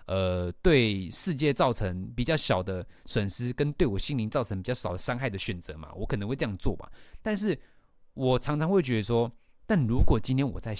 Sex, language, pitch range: male, Chinese, 95-140 Hz